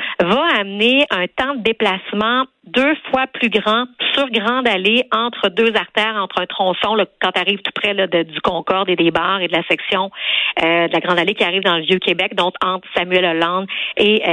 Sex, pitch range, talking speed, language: female, 185-240 Hz, 195 wpm, French